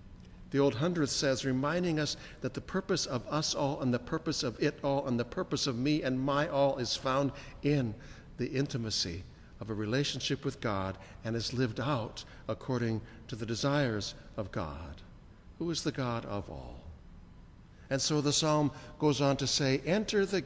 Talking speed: 180 wpm